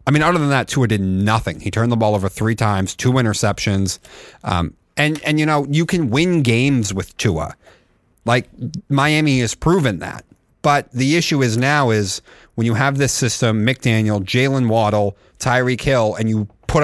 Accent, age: American, 30-49